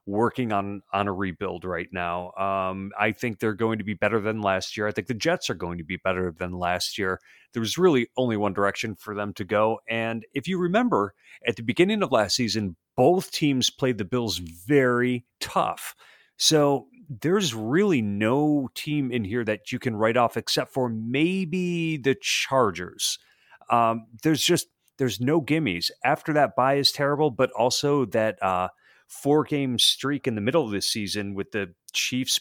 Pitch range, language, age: 100-135 Hz, English, 30-49